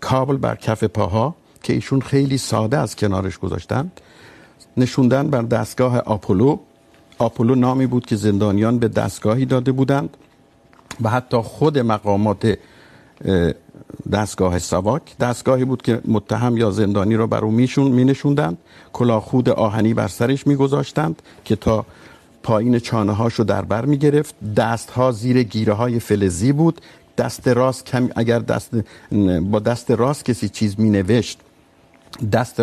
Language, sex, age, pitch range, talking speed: Urdu, male, 50-69, 110-135 Hz, 130 wpm